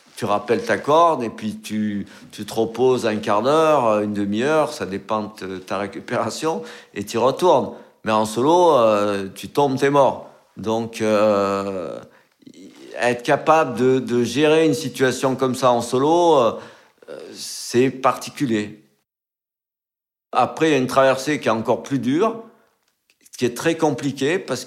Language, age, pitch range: French, 50-69, 110-140 Hz